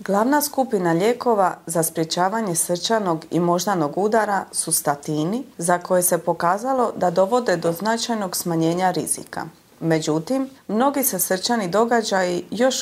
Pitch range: 175-230 Hz